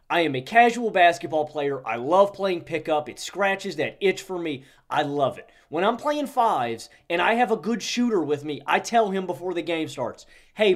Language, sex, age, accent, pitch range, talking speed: English, male, 30-49, American, 150-215 Hz, 220 wpm